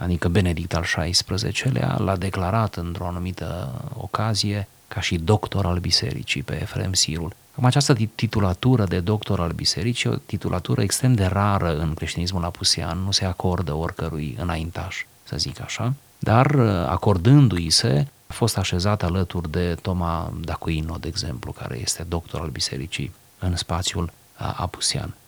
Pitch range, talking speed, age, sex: 90-120 Hz, 140 wpm, 30-49, male